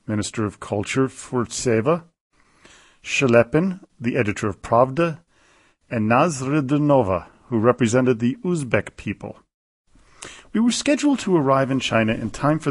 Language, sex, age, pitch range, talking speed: English, male, 40-59, 110-155 Hz, 125 wpm